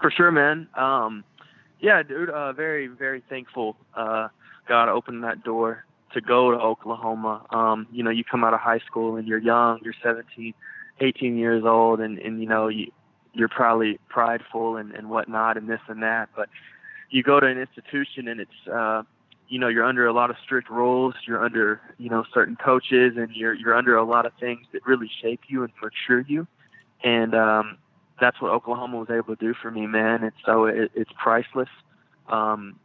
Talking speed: 195 wpm